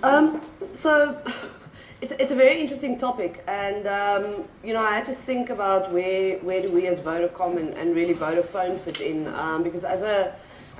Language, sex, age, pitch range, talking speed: English, female, 30-49, 180-220 Hz, 180 wpm